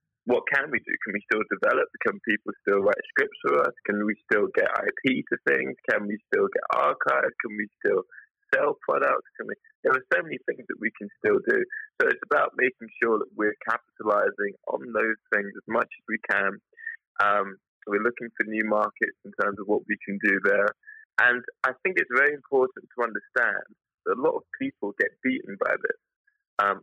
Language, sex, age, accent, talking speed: English, male, 20-39, British, 200 wpm